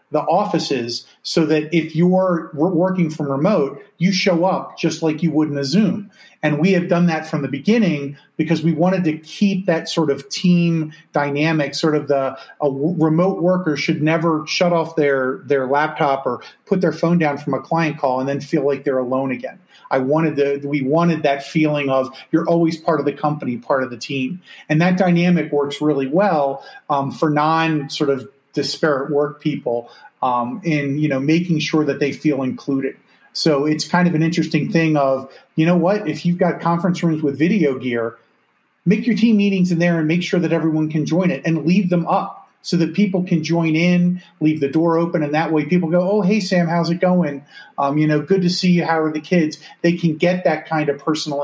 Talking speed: 215 wpm